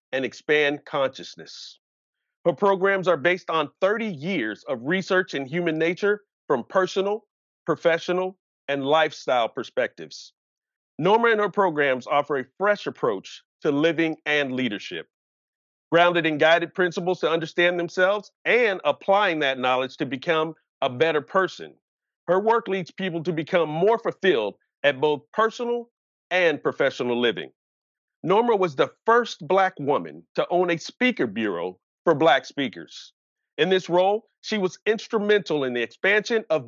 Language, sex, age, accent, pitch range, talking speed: English, male, 40-59, American, 145-195 Hz, 140 wpm